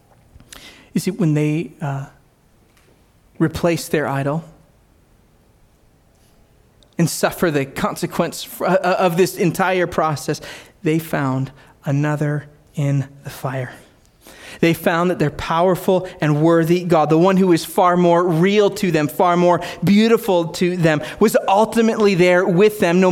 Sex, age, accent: male, 30-49, American